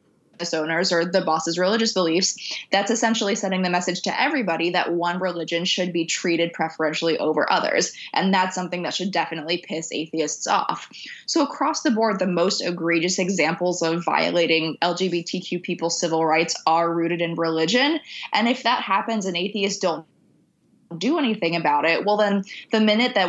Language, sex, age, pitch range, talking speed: English, female, 20-39, 170-200 Hz, 165 wpm